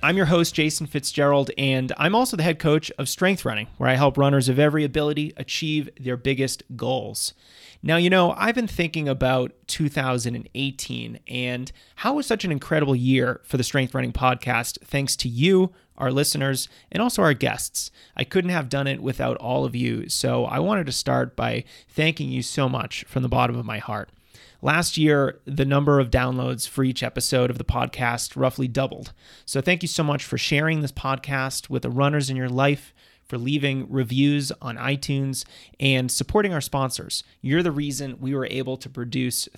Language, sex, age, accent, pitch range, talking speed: English, male, 30-49, American, 130-155 Hz, 190 wpm